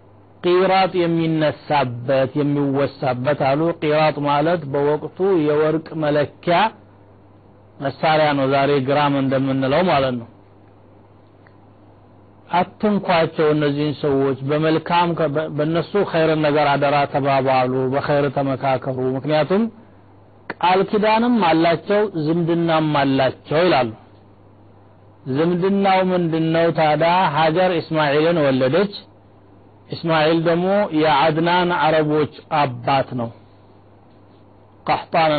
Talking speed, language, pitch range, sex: 75 wpm, Amharic, 130-160 Hz, male